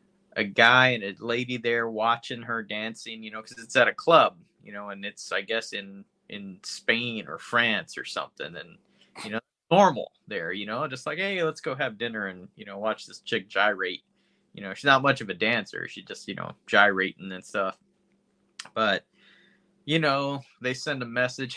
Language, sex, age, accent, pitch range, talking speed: English, male, 20-39, American, 110-150 Hz, 200 wpm